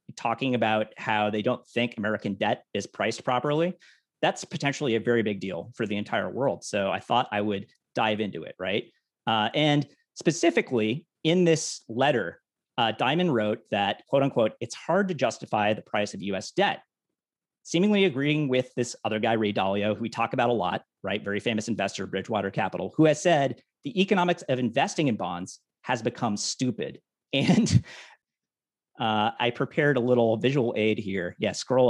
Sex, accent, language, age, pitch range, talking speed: male, American, English, 40-59, 110-170 Hz, 175 wpm